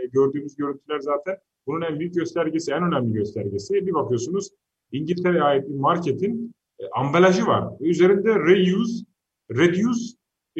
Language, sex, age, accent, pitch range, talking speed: Turkish, male, 40-59, native, 125-195 Hz, 130 wpm